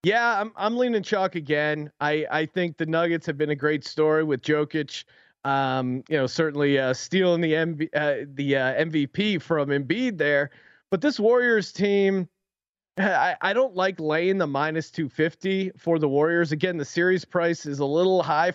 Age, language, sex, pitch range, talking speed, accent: 30-49, English, male, 145-175 Hz, 185 wpm, American